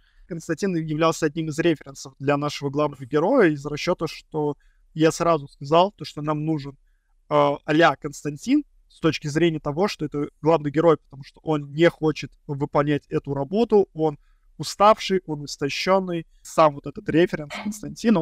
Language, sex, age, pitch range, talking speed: Russian, male, 20-39, 140-160 Hz, 150 wpm